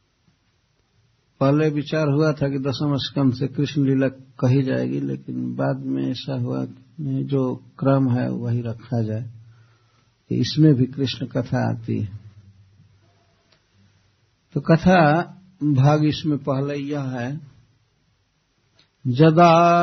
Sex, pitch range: male, 115-150 Hz